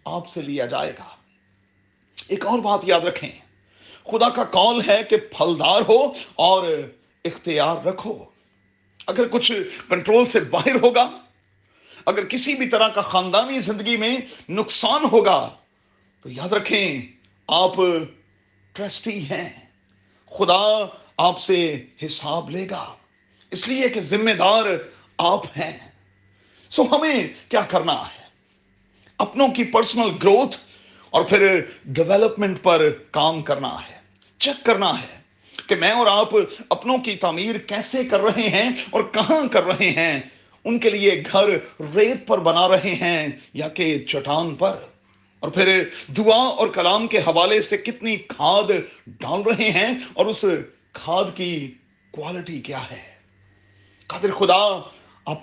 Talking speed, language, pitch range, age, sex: 135 wpm, Urdu, 135-220 Hz, 40-59, male